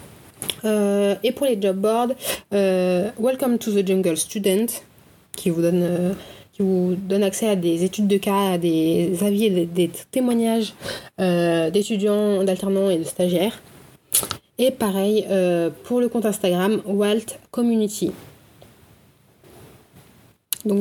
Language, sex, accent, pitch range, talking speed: French, female, French, 190-225 Hz, 140 wpm